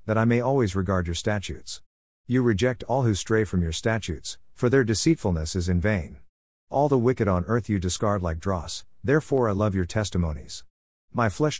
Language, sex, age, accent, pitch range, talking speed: English, male, 50-69, American, 90-115 Hz, 190 wpm